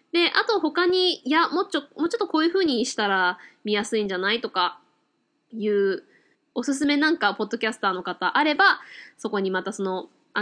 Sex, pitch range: female, 195-320 Hz